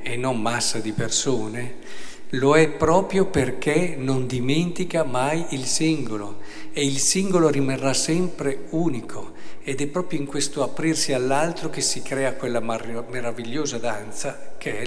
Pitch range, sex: 120-160 Hz, male